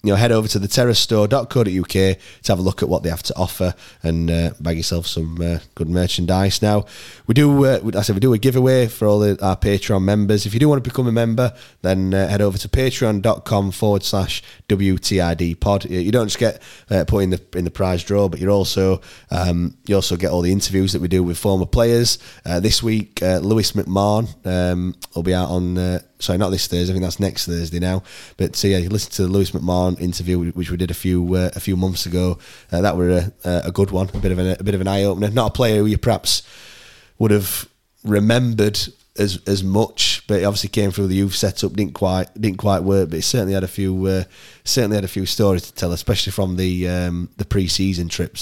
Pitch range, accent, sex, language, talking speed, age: 90-105 Hz, British, male, English, 240 wpm, 20-39